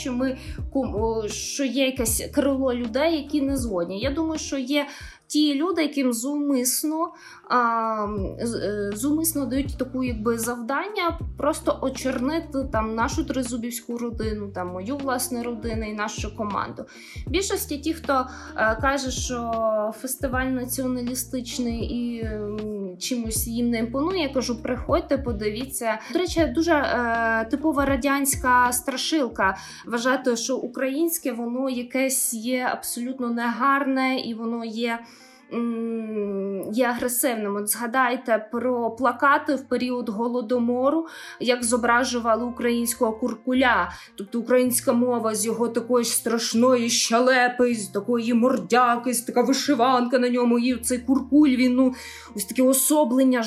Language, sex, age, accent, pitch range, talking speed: Ukrainian, female, 20-39, native, 235-270 Hz, 120 wpm